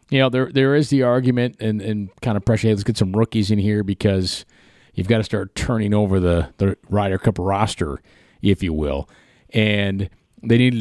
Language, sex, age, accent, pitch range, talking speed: English, male, 40-59, American, 100-125 Hz, 205 wpm